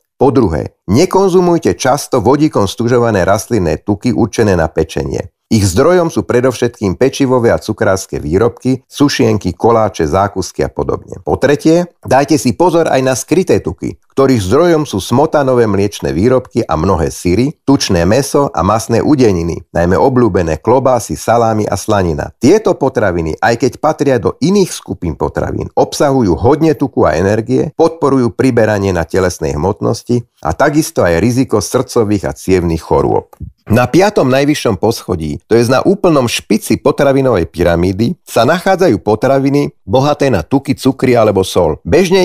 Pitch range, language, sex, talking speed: 100-140 Hz, Slovak, male, 145 wpm